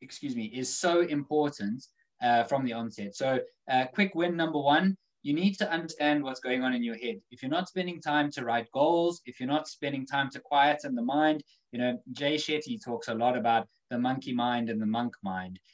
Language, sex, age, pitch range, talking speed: English, male, 20-39, 120-155 Hz, 215 wpm